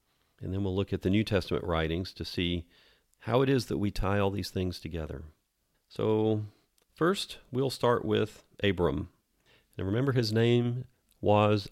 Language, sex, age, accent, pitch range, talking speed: English, male, 40-59, American, 95-120 Hz, 165 wpm